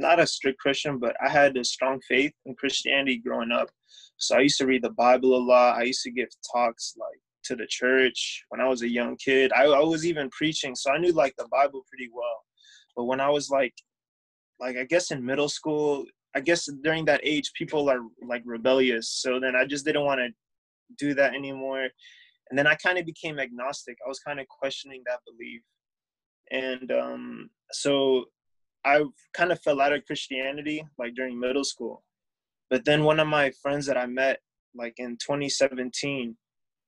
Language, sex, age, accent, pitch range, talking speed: English, male, 20-39, American, 125-145 Hz, 195 wpm